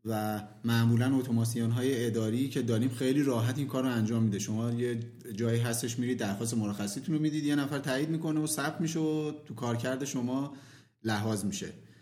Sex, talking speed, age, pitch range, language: male, 170 wpm, 30-49, 120-150 Hz, Persian